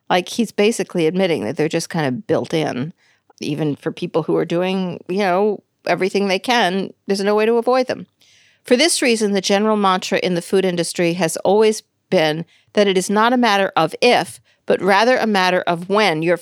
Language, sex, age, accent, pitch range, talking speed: English, female, 50-69, American, 185-240 Hz, 205 wpm